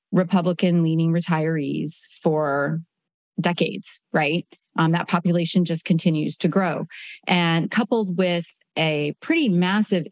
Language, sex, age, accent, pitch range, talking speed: English, female, 30-49, American, 160-195 Hz, 105 wpm